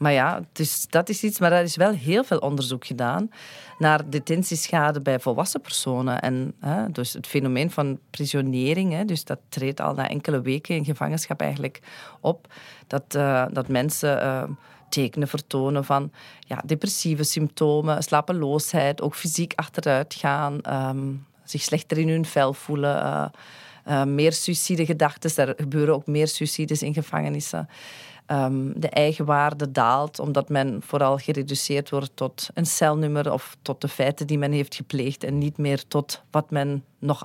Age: 40-59